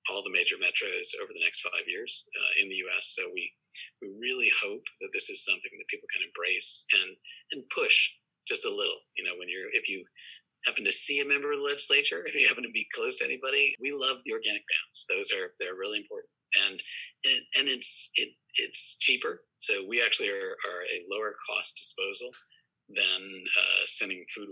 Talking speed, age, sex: 210 wpm, 40-59, male